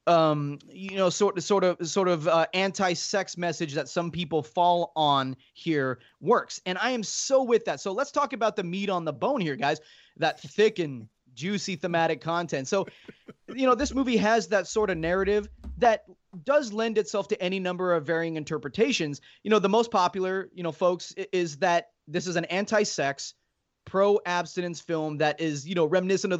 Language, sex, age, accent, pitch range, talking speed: English, male, 20-39, American, 155-200 Hz, 190 wpm